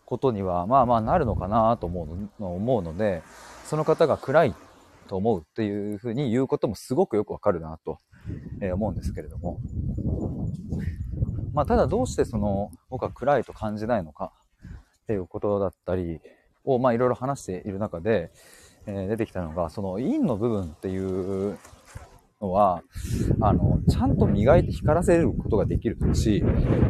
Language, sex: Japanese, male